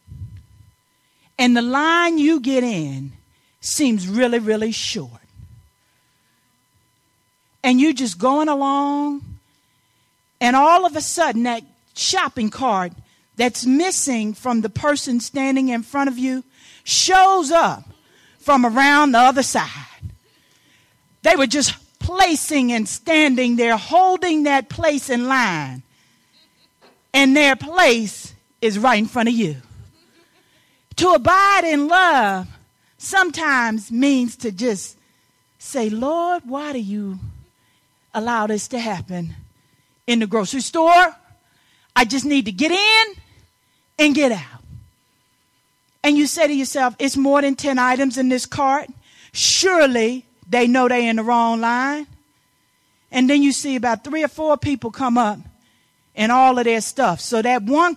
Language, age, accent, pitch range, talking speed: English, 40-59, American, 215-285 Hz, 135 wpm